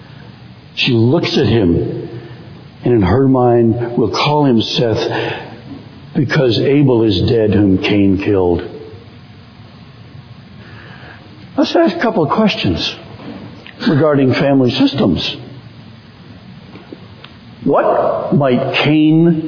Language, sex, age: English, male, 60-79